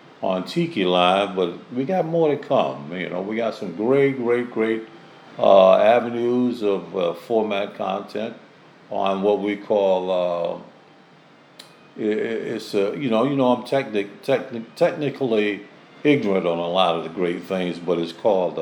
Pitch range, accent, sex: 90-120 Hz, American, male